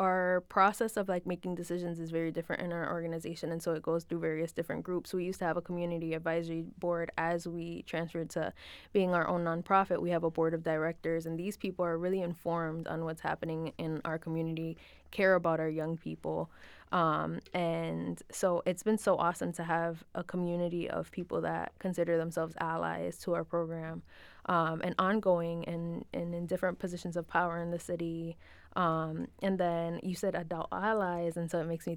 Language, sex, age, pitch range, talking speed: English, female, 20-39, 165-180 Hz, 195 wpm